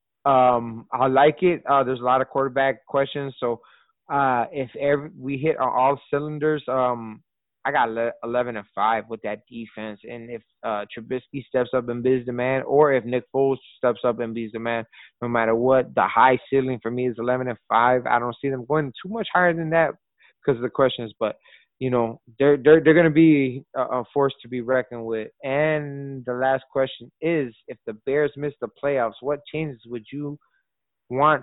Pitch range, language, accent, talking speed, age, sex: 120-140 Hz, English, American, 195 wpm, 20-39, male